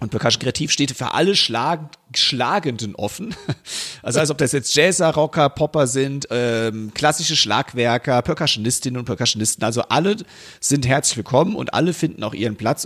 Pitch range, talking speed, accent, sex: 120-155 Hz, 165 wpm, German, male